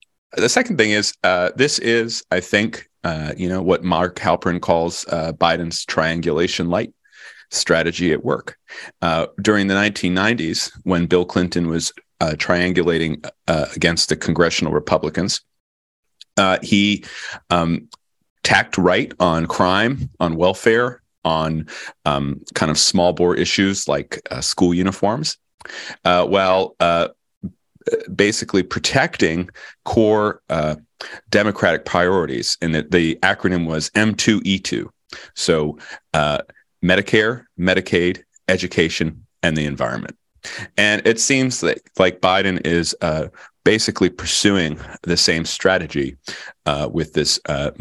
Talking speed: 125 wpm